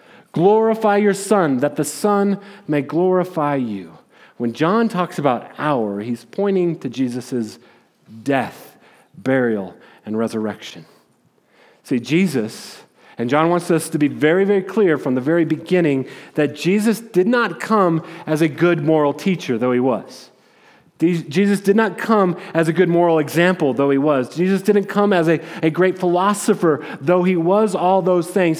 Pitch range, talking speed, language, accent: 135-195 Hz, 160 wpm, English, American